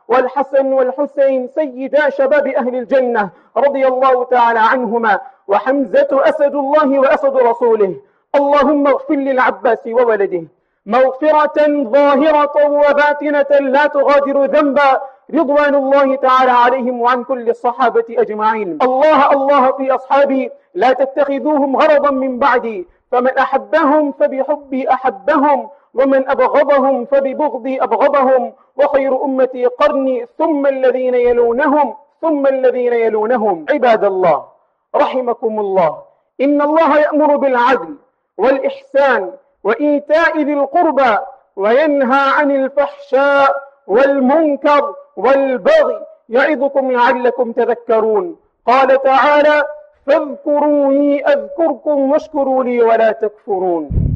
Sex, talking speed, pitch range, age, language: male, 95 wpm, 255-290 Hz, 40-59, English